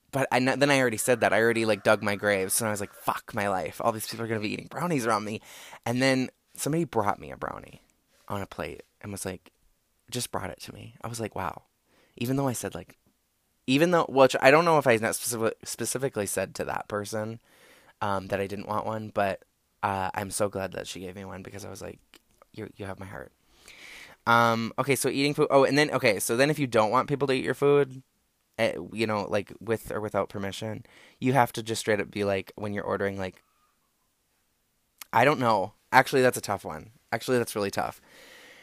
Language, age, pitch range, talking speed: English, 20-39, 105-125 Hz, 230 wpm